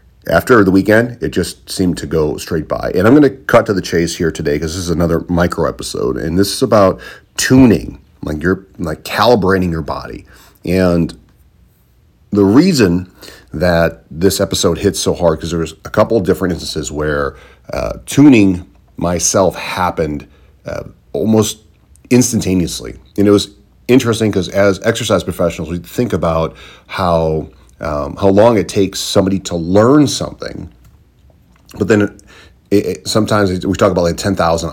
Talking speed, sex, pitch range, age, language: 165 wpm, male, 80-100 Hz, 40-59, English